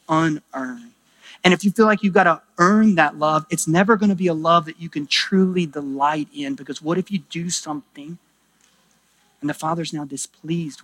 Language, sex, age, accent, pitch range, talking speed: English, male, 30-49, American, 155-215 Hz, 200 wpm